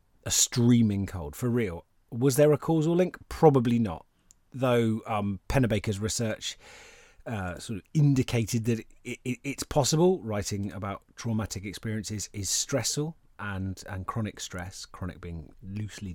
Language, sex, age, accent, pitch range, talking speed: English, male, 30-49, British, 90-125 Hz, 135 wpm